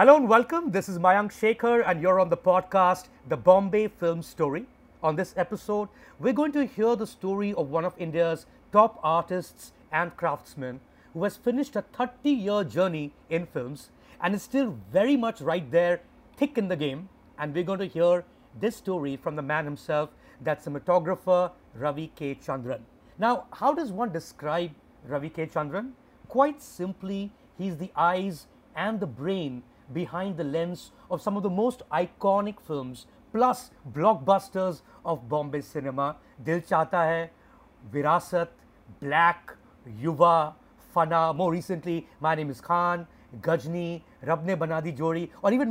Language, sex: English, male